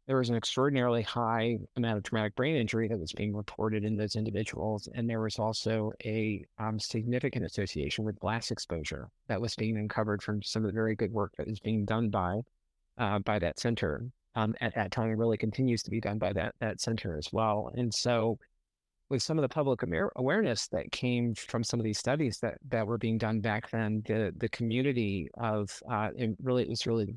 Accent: American